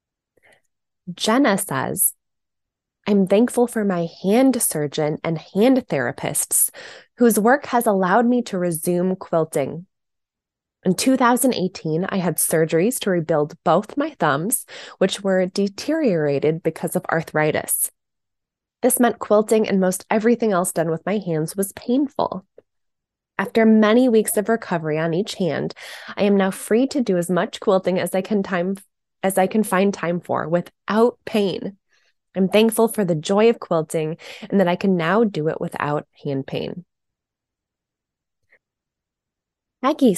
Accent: American